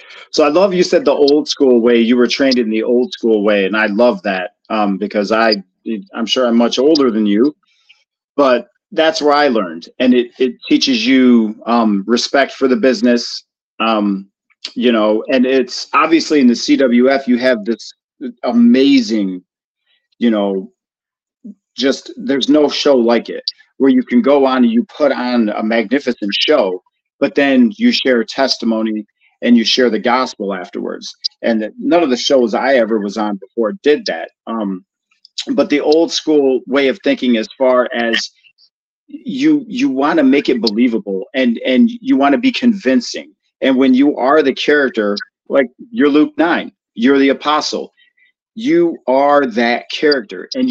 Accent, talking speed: American, 170 wpm